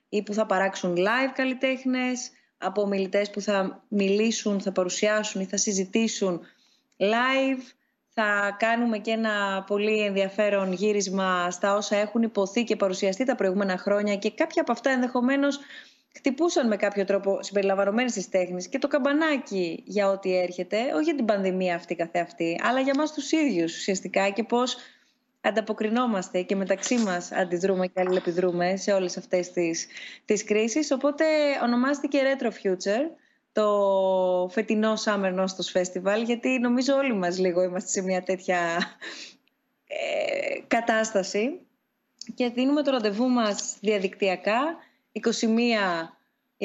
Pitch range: 195-255 Hz